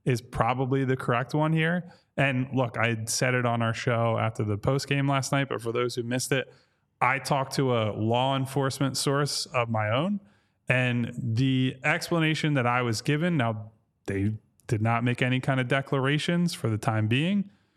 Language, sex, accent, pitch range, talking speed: English, male, American, 115-140 Hz, 190 wpm